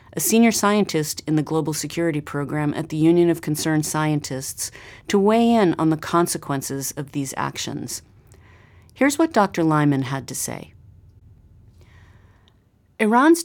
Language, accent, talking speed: English, American, 140 wpm